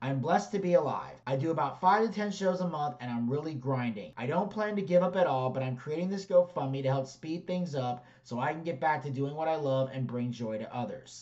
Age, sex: 30-49, male